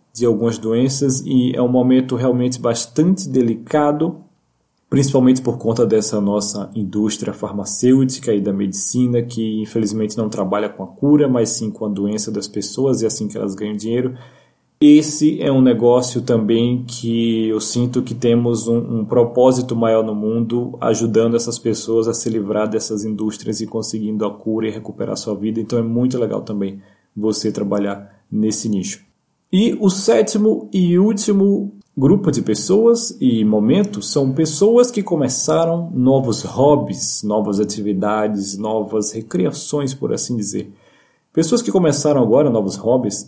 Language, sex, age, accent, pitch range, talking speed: Portuguese, male, 20-39, Brazilian, 110-135 Hz, 150 wpm